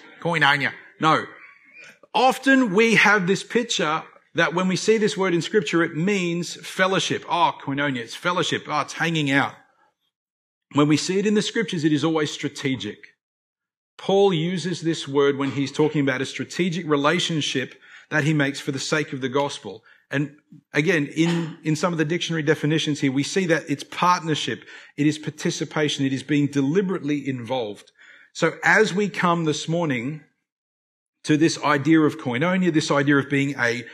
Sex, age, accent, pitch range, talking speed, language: male, 40-59, Australian, 140-180 Hz, 170 wpm, English